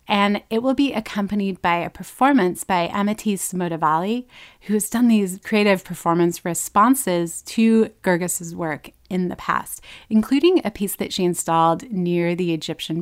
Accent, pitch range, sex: American, 175-215 Hz, female